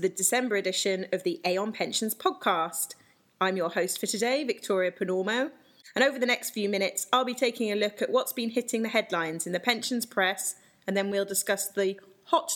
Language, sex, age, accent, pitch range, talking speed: English, female, 30-49, British, 180-250 Hz, 200 wpm